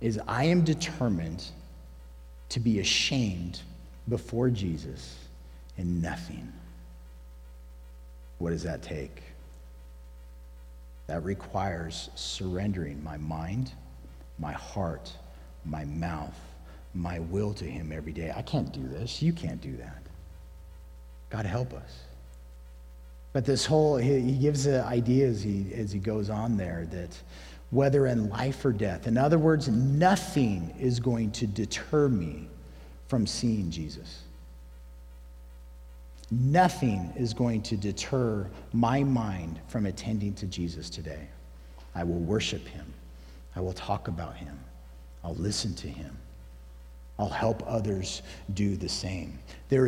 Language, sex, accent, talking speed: English, male, American, 125 wpm